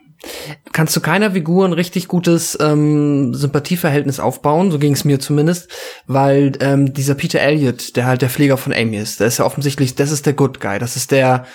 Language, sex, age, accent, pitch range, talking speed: German, male, 20-39, German, 140-170 Hz, 205 wpm